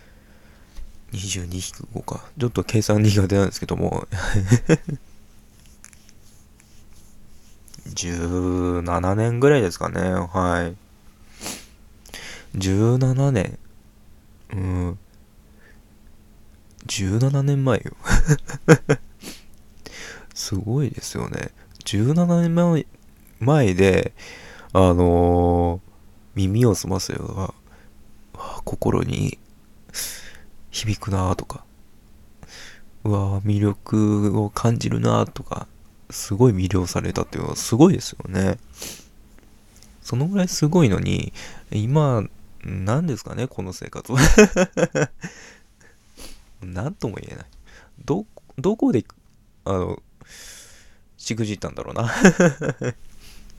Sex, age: male, 20-39